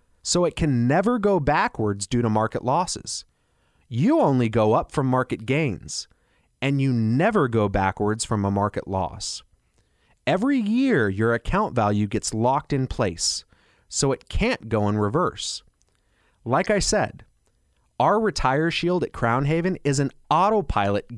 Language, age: English, 30-49